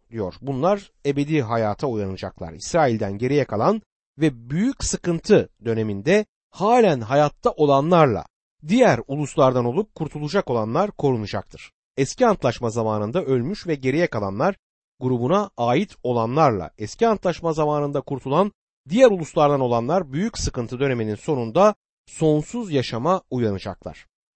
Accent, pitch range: native, 120-180 Hz